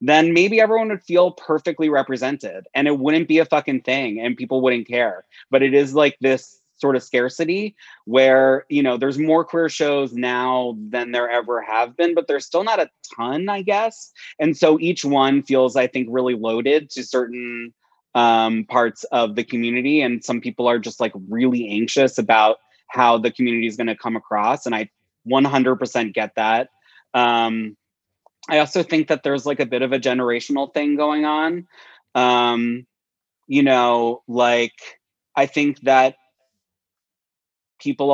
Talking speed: 165 wpm